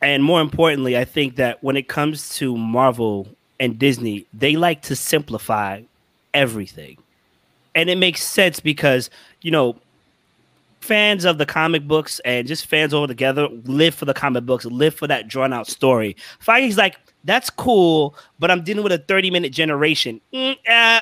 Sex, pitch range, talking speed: male, 135-175 Hz, 170 wpm